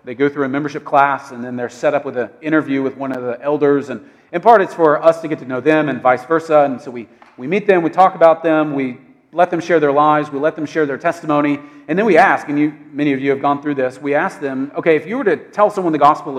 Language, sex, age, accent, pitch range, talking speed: English, male, 40-59, American, 135-180 Hz, 295 wpm